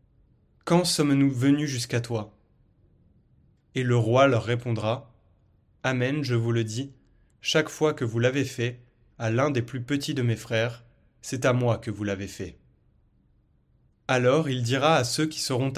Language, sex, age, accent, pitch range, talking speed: French, male, 30-49, French, 115-140 Hz, 165 wpm